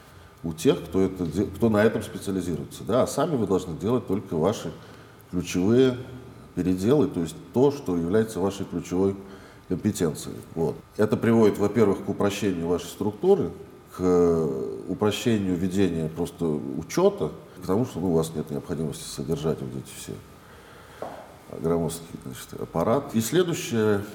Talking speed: 135 wpm